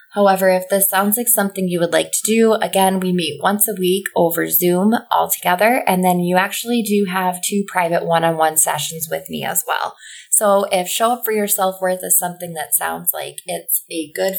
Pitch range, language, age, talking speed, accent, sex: 175-215 Hz, English, 20-39, 210 wpm, American, female